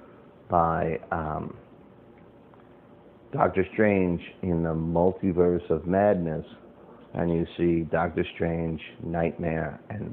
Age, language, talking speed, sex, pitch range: 50-69, English, 95 wpm, male, 85-105 Hz